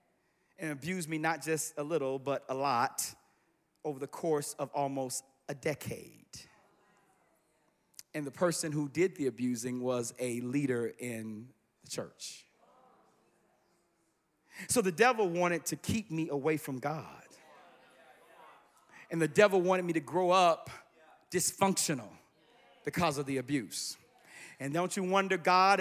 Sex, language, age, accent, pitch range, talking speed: male, English, 40-59, American, 155-260 Hz, 135 wpm